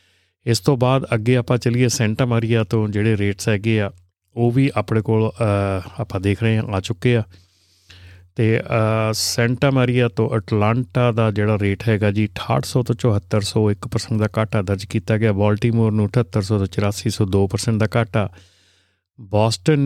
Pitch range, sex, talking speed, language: 100-120 Hz, male, 155 wpm, Punjabi